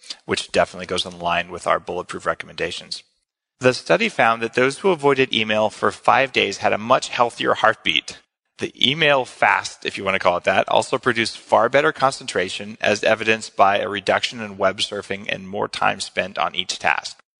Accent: American